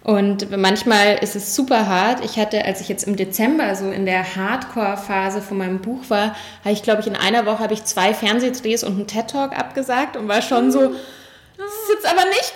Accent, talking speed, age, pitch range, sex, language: German, 215 wpm, 10-29, 205-245 Hz, female, German